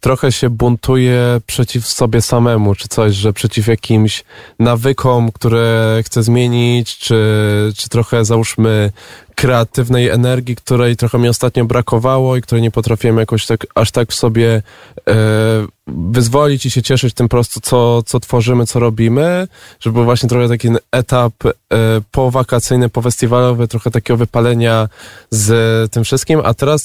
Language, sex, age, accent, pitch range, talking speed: Polish, male, 20-39, native, 115-135 Hz, 145 wpm